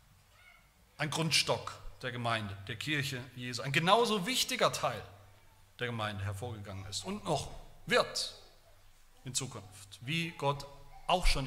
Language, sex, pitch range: German, male, 100-155 Hz